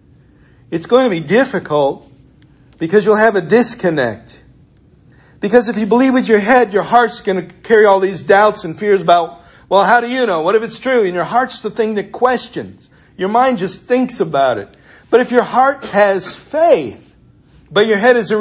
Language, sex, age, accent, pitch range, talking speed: English, male, 50-69, American, 165-215 Hz, 195 wpm